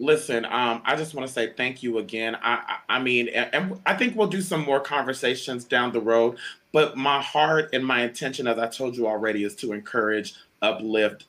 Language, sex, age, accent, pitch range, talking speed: English, male, 30-49, American, 120-145 Hz, 220 wpm